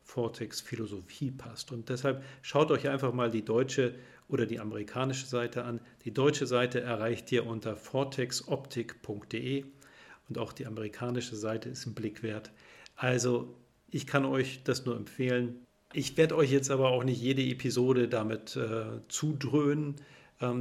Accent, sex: German, male